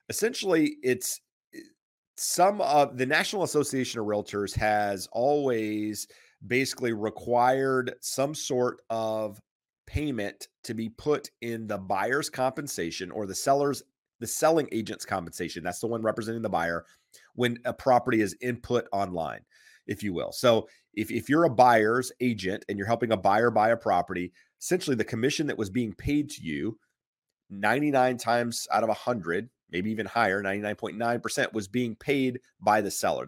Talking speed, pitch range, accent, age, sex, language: 155 wpm, 100-130 Hz, American, 30-49, male, English